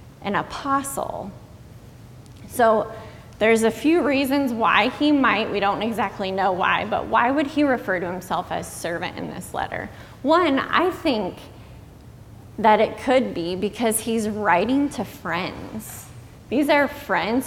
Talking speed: 145 wpm